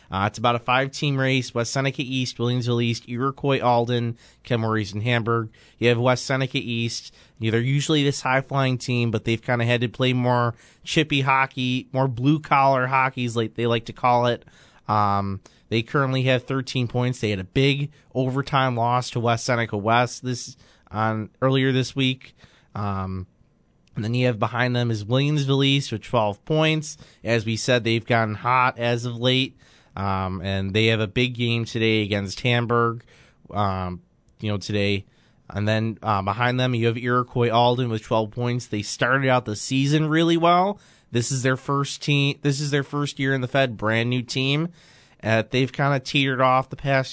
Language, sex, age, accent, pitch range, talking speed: English, male, 30-49, American, 110-130 Hz, 185 wpm